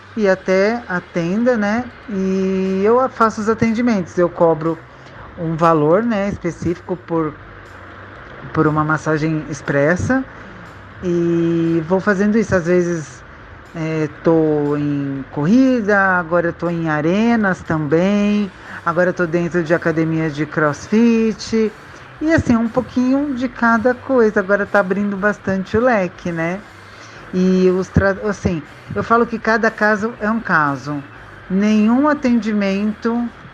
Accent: Brazilian